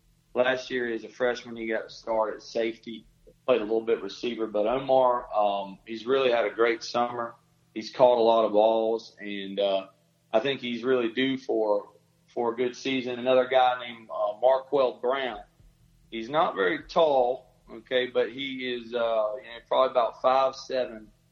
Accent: American